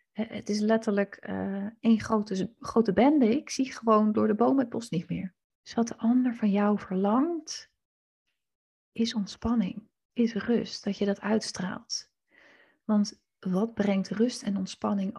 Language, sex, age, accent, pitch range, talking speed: Dutch, female, 30-49, Dutch, 195-230 Hz, 155 wpm